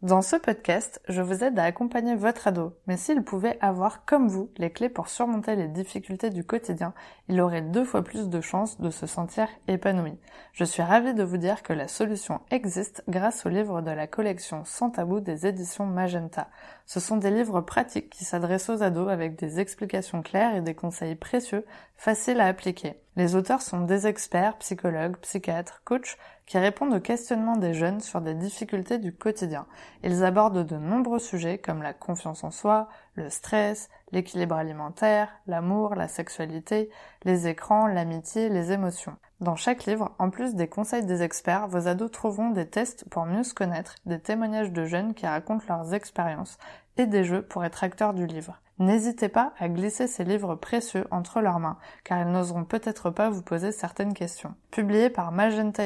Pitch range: 175-215 Hz